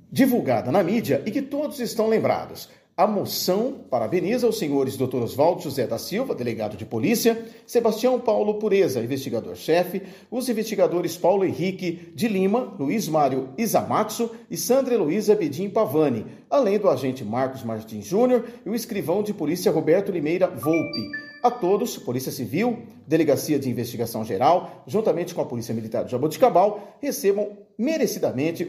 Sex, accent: male, Brazilian